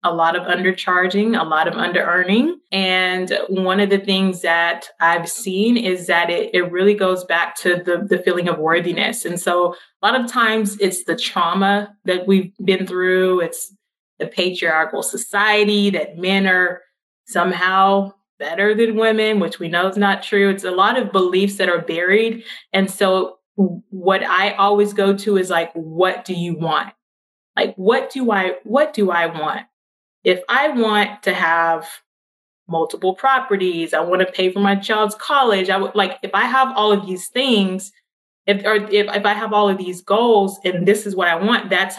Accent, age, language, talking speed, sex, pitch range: American, 20-39, English, 185 wpm, female, 180-210 Hz